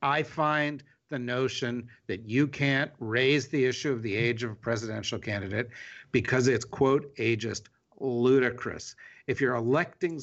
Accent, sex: American, male